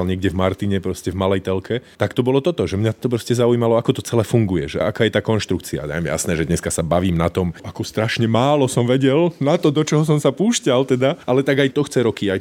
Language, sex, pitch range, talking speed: Slovak, male, 105-130 Hz, 265 wpm